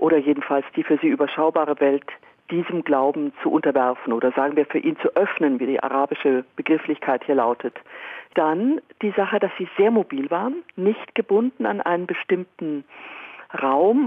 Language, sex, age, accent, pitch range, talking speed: German, female, 50-69, German, 150-210 Hz, 160 wpm